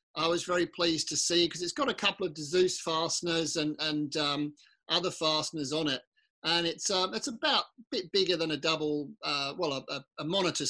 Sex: male